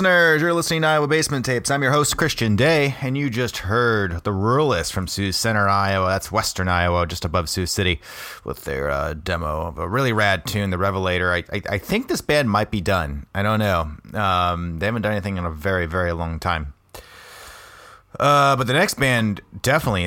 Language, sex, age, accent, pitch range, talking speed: English, male, 30-49, American, 85-105 Hz, 205 wpm